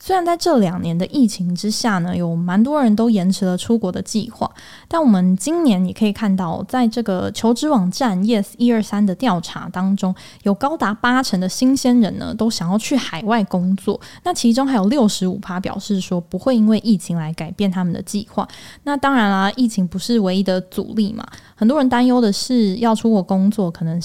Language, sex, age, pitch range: Chinese, female, 10-29, 190-240 Hz